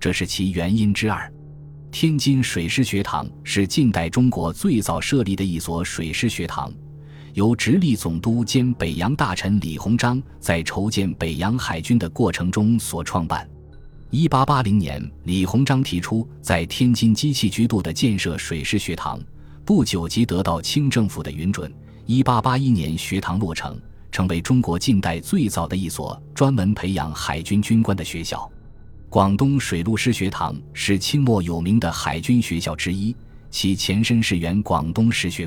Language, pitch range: Chinese, 85-120 Hz